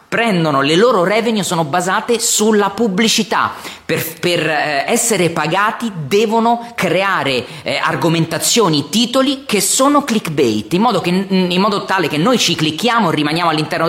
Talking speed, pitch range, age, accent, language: 145 wpm, 150-205 Hz, 30-49, native, Italian